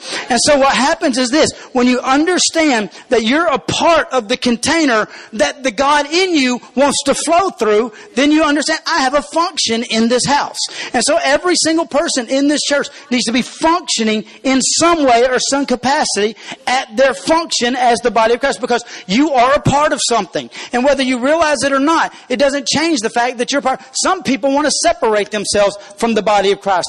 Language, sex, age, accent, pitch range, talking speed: English, male, 40-59, American, 220-280 Hz, 210 wpm